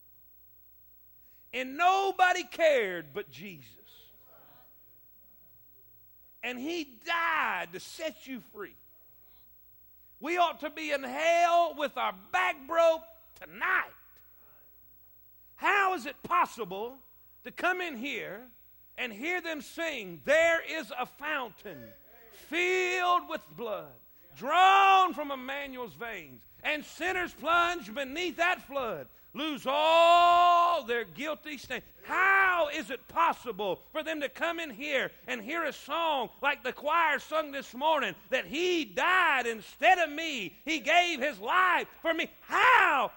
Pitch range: 250-345 Hz